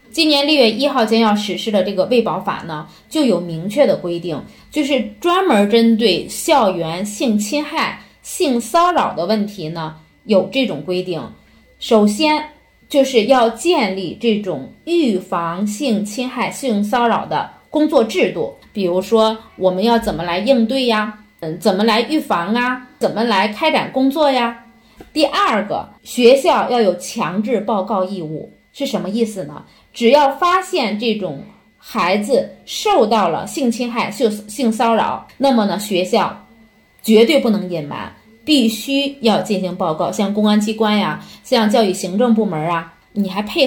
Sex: female